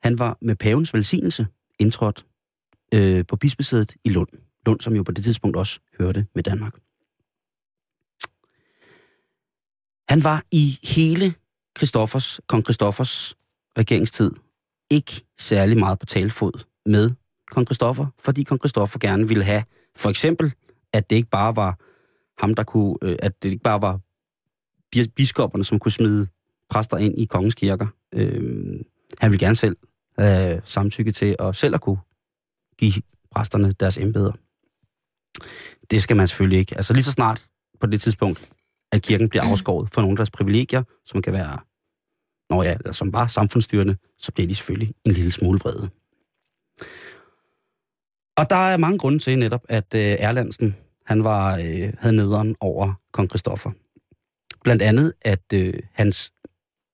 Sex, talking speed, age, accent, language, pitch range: male, 150 wpm, 30-49, native, Danish, 100-120 Hz